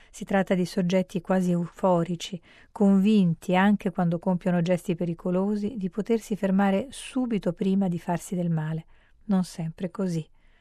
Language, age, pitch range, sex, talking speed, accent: Italian, 40-59, 175-200 Hz, female, 135 wpm, native